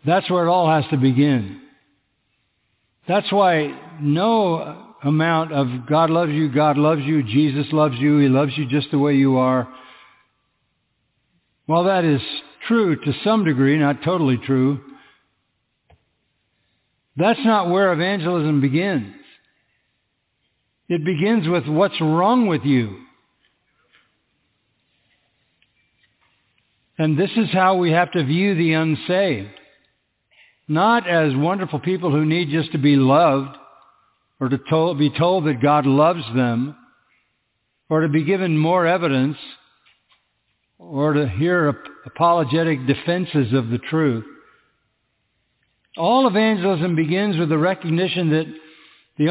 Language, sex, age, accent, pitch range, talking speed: English, male, 60-79, American, 130-170 Hz, 125 wpm